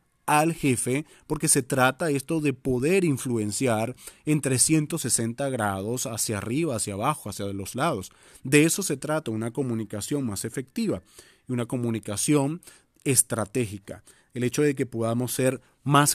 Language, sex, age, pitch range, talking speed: Spanish, male, 40-59, 115-155 Hz, 140 wpm